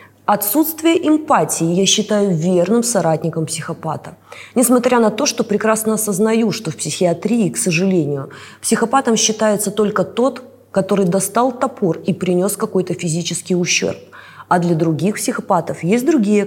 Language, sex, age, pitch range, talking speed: Russian, female, 20-39, 175-220 Hz, 130 wpm